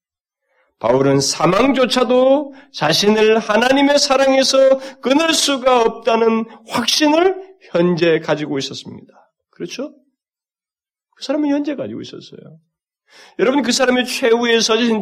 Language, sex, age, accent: Korean, male, 30-49, native